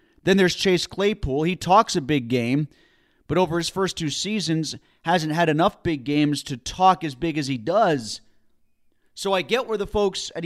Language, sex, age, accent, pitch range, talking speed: English, male, 30-49, American, 150-190 Hz, 195 wpm